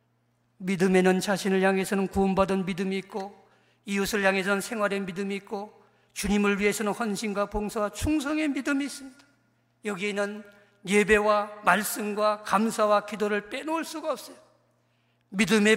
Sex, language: male, Korean